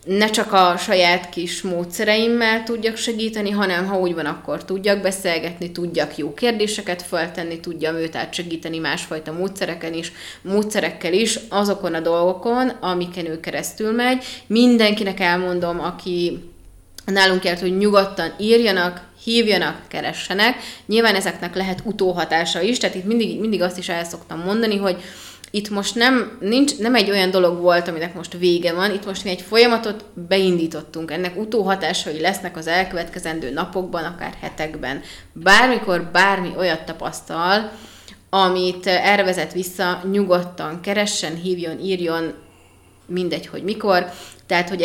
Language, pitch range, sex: Hungarian, 170-205 Hz, female